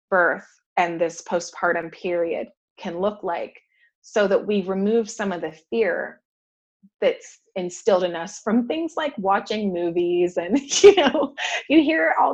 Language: English